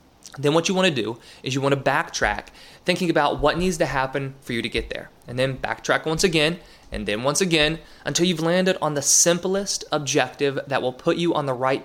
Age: 20-39